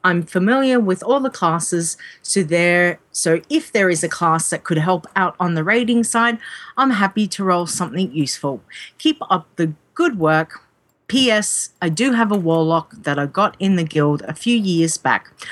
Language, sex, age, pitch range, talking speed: English, female, 40-59, 170-235 Hz, 185 wpm